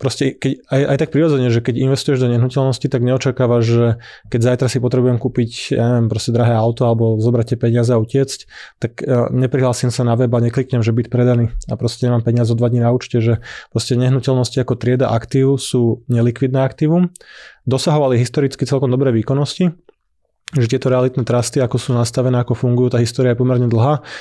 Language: Slovak